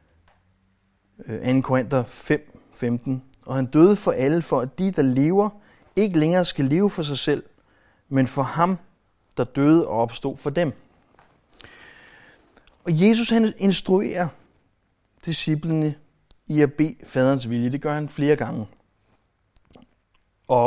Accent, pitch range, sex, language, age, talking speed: native, 110-145 Hz, male, Danish, 30-49, 130 wpm